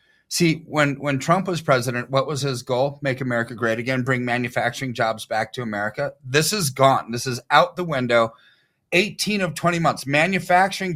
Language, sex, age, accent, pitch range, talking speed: English, male, 30-49, American, 130-170 Hz, 180 wpm